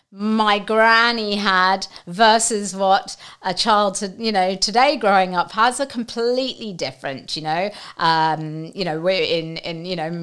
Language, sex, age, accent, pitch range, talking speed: English, female, 40-59, British, 175-225 Hz, 155 wpm